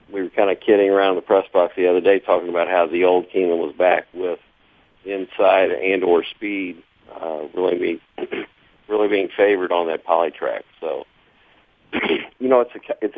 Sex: male